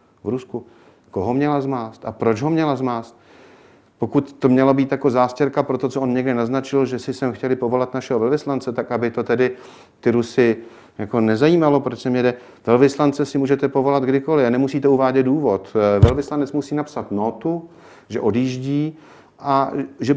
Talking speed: 170 wpm